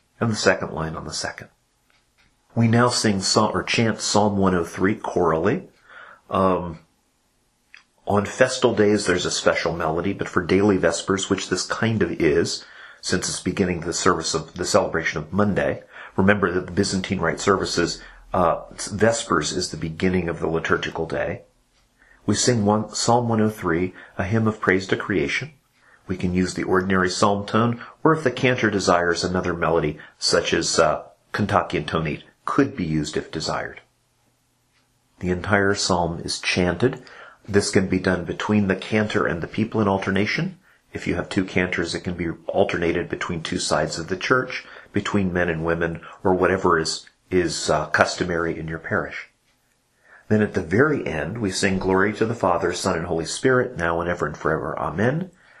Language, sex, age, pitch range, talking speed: English, male, 40-59, 90-110 Hz, 170 wpm